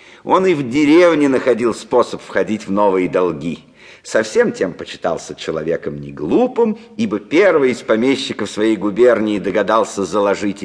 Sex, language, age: male, English, 50-69